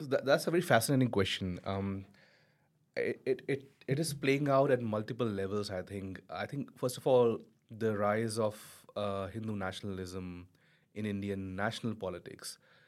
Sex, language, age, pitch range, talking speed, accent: male, English, 30-49, 95-125 Hz, 150 wpm, Indian